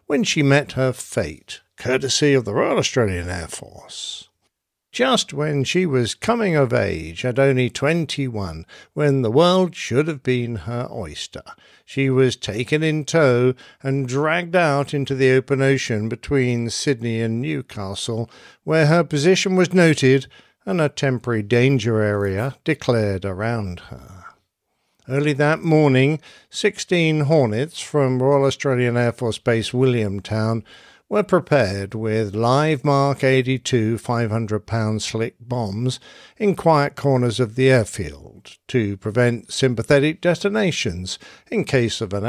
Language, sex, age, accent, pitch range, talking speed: English, male, 60-79, British, 115-150 Hz, 135 wpm